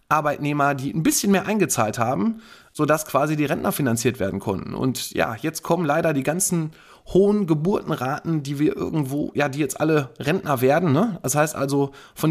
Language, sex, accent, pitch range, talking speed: German, male, German, 125-160 Hz, 175 wpm